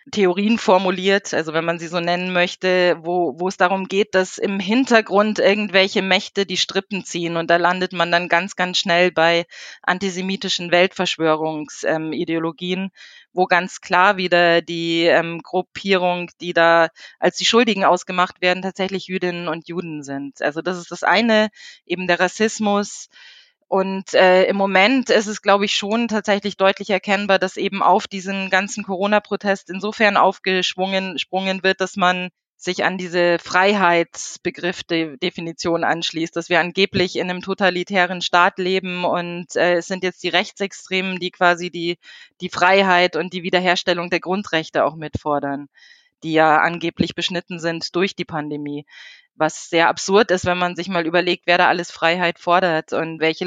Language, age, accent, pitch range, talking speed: German, 20-39, German, 175-195 Hz, 155 wpm